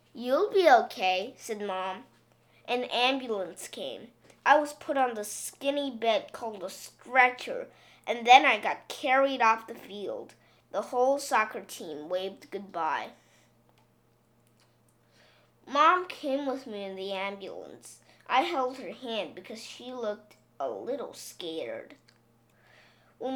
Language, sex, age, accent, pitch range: Chinese, female, 20-39, American, 195-270 Hz